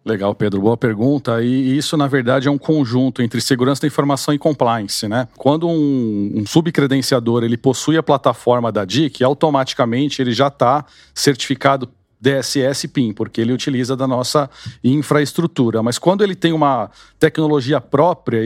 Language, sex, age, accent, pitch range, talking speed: Portuguese, male, 40-59, Brazilian, 130-155 Hz, 155 wpm